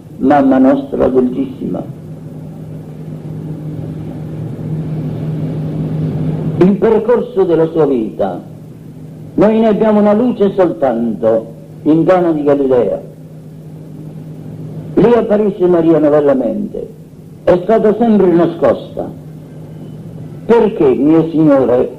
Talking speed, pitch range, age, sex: 80 wpm, 150-185 Hz, 50-69, male